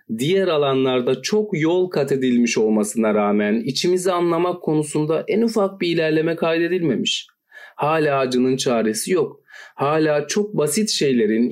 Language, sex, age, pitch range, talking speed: Turkish, male, 40-59, 125-200 Hz, 125 wpm